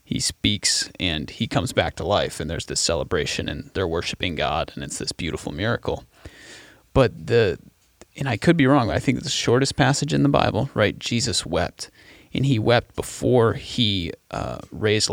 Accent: American